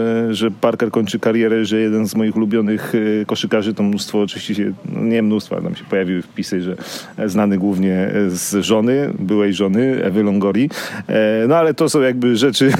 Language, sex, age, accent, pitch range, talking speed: Polish, male, 40-59, native, 105-115 Hz, 165 wpm